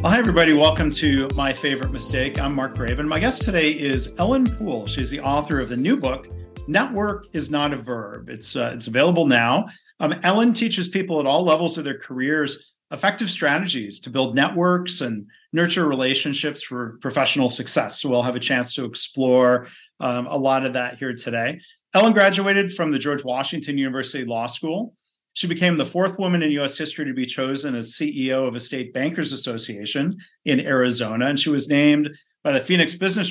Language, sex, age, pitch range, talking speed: English, male, 40-59, 130-160 Hz, 190 wpm